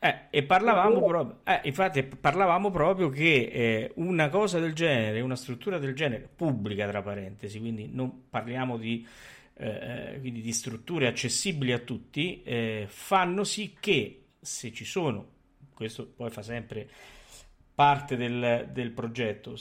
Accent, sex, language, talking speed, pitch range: native, male, Italian, 140 wpm, 120-170 Hz